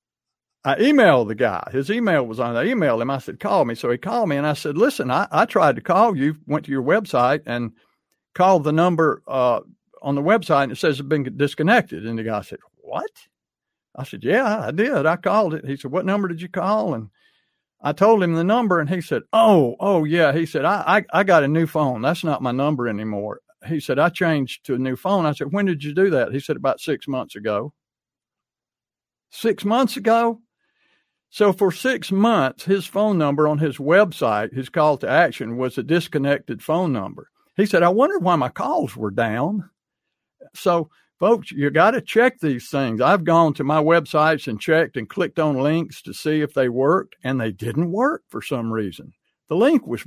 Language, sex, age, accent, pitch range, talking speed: English, male, 50-69, American, 140-195 Hz, 215 wpm